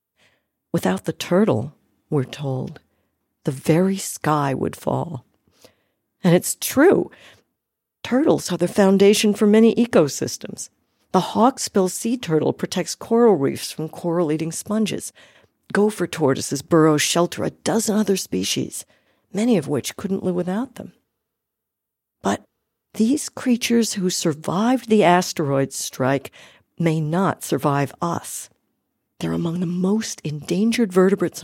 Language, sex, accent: English, female, American